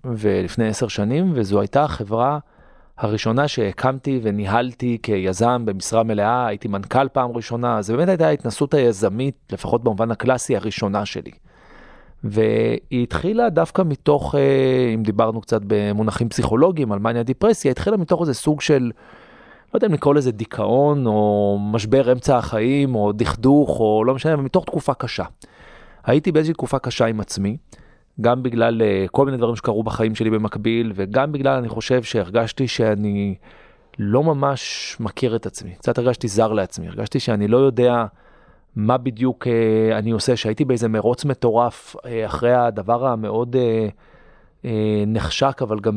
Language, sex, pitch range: Hebrew, male, 110-130 Hz